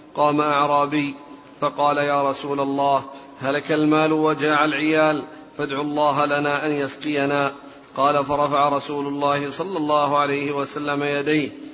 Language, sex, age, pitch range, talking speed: Arabic, male, 40-59, 145-155 Hz, 125 wpm